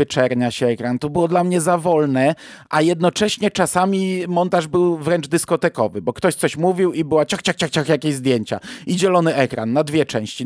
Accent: native